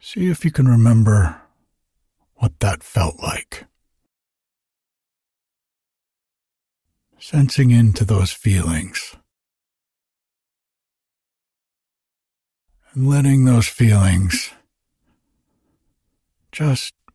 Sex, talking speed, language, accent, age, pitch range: male, 65 wpm, English, American, 60-79, 85-125 Hz